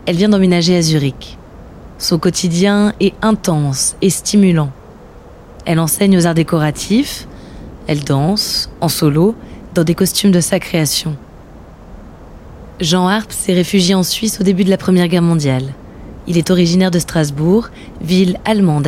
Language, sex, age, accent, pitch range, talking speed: French, female, 20-39, French, 155-195 Hz, 145 wpm